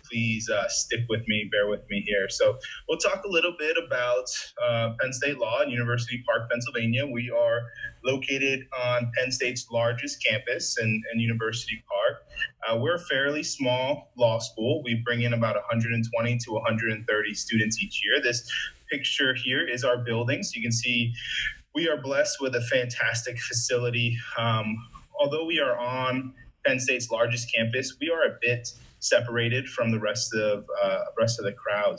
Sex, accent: male, American